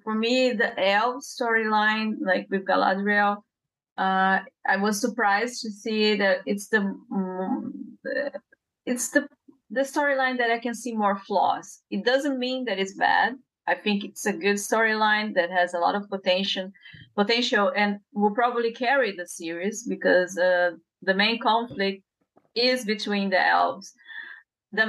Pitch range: 190-250 Hz